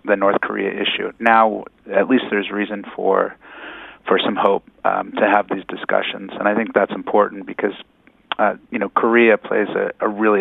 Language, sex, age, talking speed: English, male, 30-49, 185 wpm